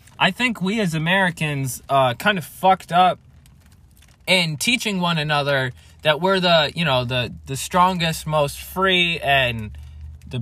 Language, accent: English, American